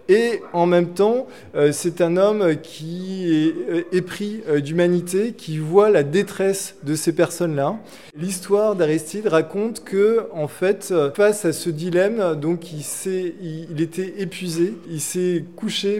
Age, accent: 20-39, French